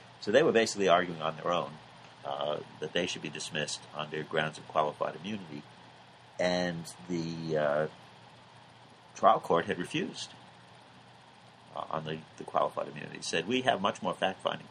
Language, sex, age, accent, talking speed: English, male, 50-69, American, 165 wpm